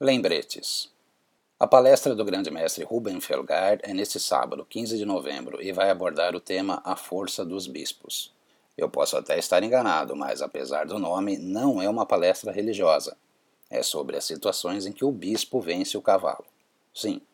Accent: Brazilian